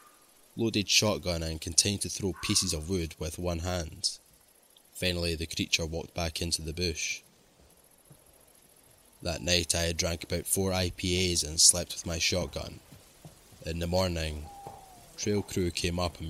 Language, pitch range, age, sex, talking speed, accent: English, 80-95 Hz, 20-39, male, 150 wpm, British